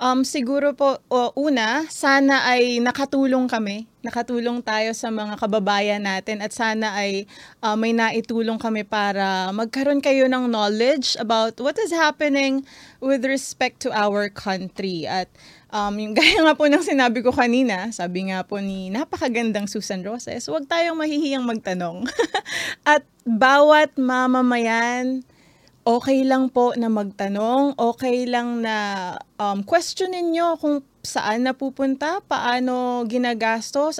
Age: 20-39